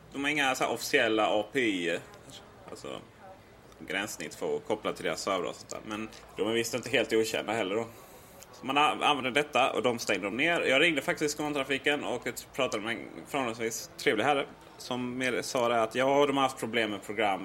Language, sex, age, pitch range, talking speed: Swedish, male, 30-49, 115-170 Hz, 175 wpm